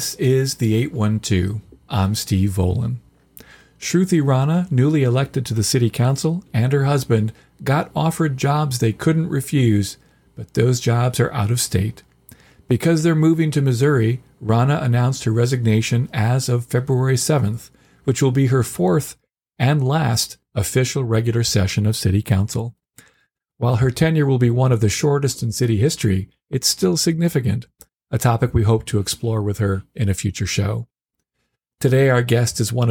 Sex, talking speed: male, 160 wpm